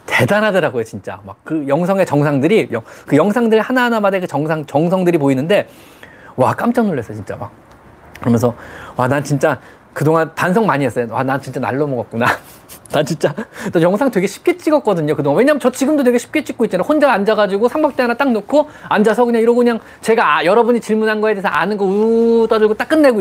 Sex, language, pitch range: male, Korean, 150-225 Hz